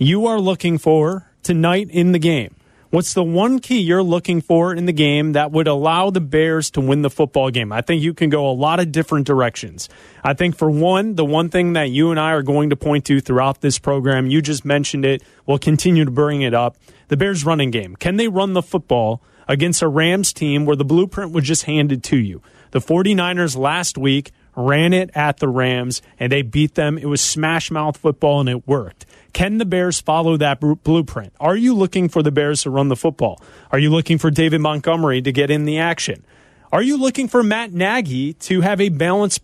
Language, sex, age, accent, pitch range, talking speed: English, male, 30-49, American, 140-180 Hz, 220 wpm